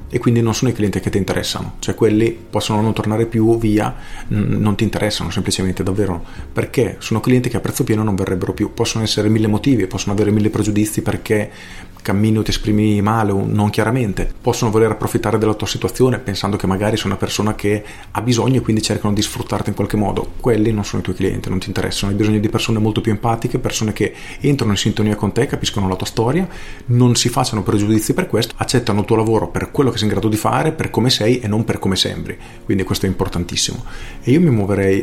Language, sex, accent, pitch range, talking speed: Italian, male, native, 100-120 Hz, 225 wpm